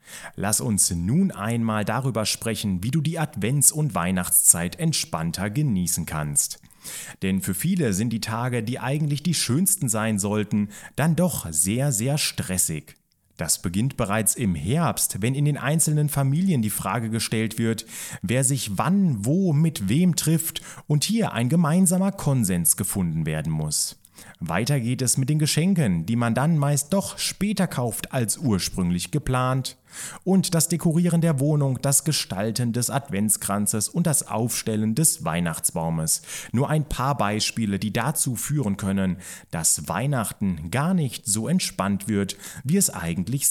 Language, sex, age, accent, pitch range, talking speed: German, male, 30-49, German, 100-155 Hz, 150 wpm